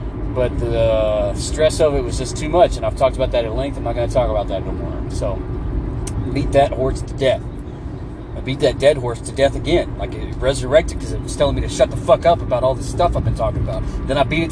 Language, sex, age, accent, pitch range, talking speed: English, male, 40-59, American, 115-150 Hz, 265 wpm